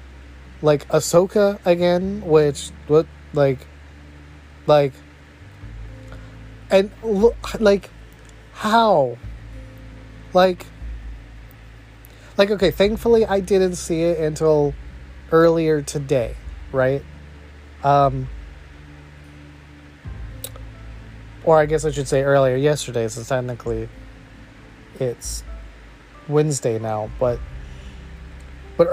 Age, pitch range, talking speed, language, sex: 30-49, 105-160 Hz, 80 wpm, English, male